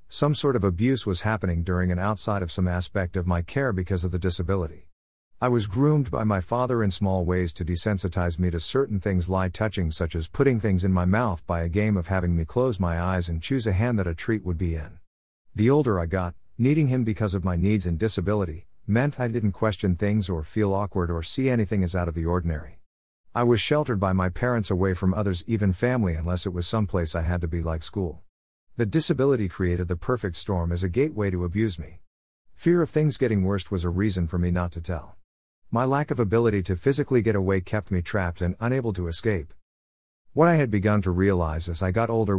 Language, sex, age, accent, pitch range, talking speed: English, male, 50-69, American, 90-110 Hz, 230 wpm